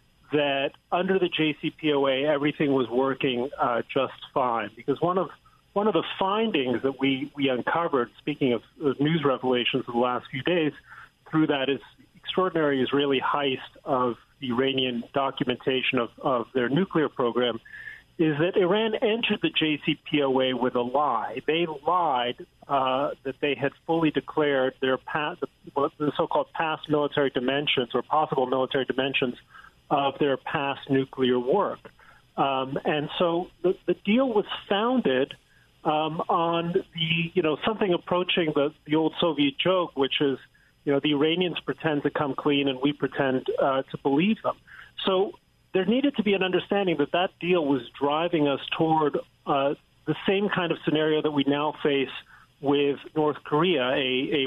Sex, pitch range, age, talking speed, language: male, 135-165 Hz, 40-59, 160 wpm, English